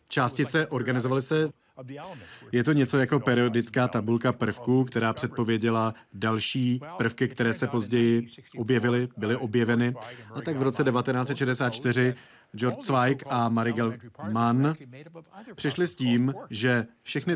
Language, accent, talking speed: Czech, native, 120 wpm